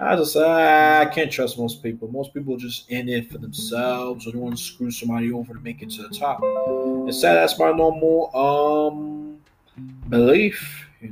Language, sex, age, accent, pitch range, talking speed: English, male, 20-39, American, 120-165 Hz, 195 wpm